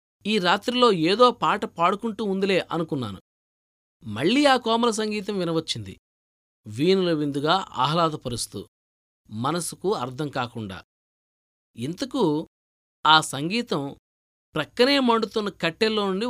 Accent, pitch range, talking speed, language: native, 140-210 Hz, 90 wpm, Telugu